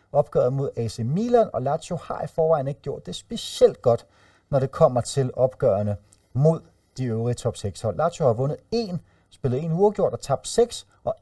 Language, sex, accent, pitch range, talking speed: Danish, male, native, 110-165 Hz, 180 wpm